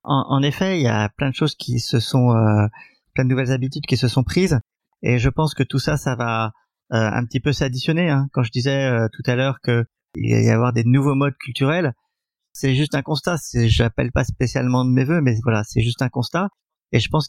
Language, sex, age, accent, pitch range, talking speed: French, male, 30-49, French, 120-140 Hz, 240 wpm